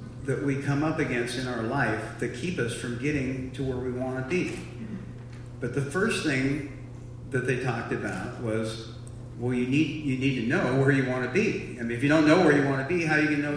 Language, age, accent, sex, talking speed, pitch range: English, 40-59, American, male, 250 wpm, 120-145 Hz